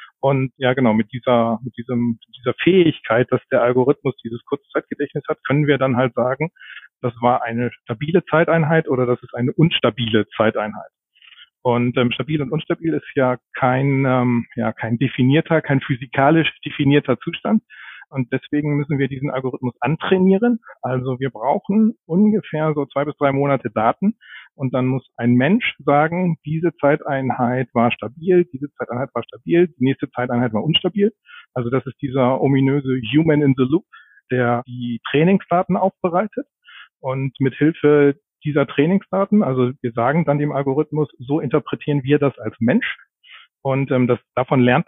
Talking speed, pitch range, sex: 155 wpm, 125-160 Hz, male